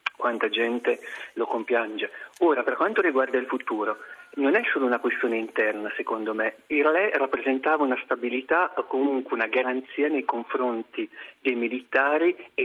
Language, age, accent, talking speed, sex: Italian, 40-59, native, 150 wpm, male